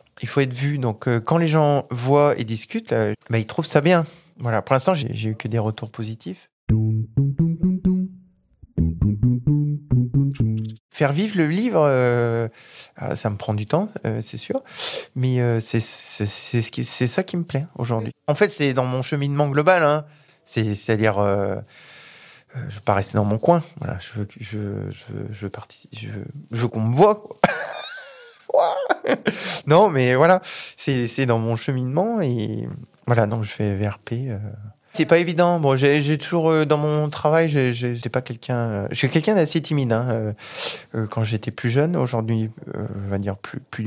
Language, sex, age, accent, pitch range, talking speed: French, male, 20-39, French, 110-155 Hz, 180 wpm